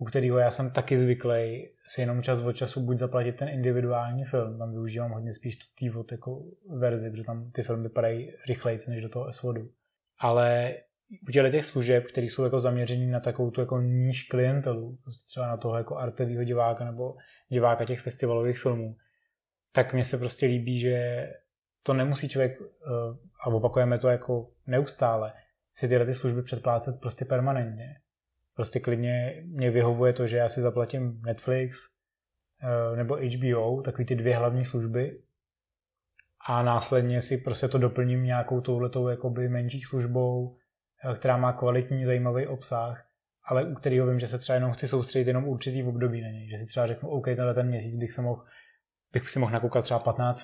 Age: 20-39